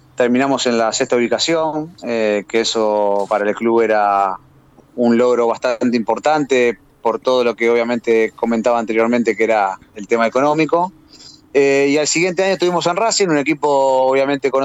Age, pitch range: 30-49, 110-140 Hz